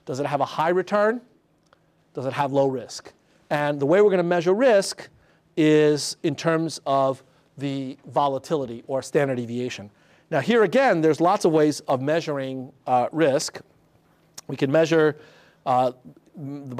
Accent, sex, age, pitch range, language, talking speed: American, male, 50-69, 135-170 Hz, English, 155 wpm